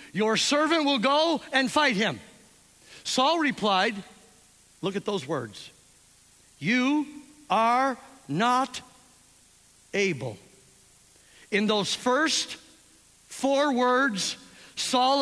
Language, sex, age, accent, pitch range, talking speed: English, male, 50-69, American, 230-310 Hz, 90 wpm